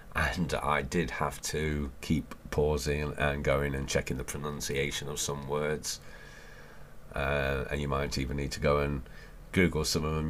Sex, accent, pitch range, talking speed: male, British, 70-80 Hz, 170 wpm